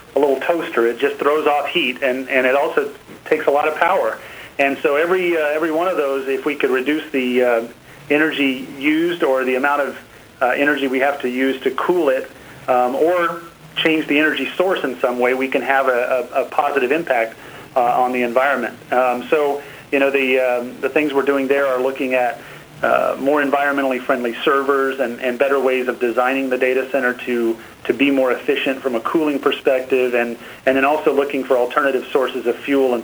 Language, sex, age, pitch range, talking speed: English, male, 40-59, 125-140 Hz, 210 wpm